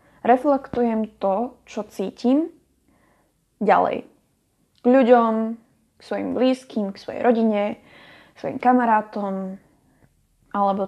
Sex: female